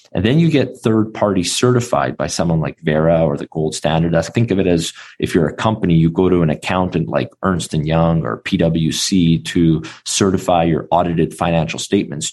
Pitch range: 80-95 Hz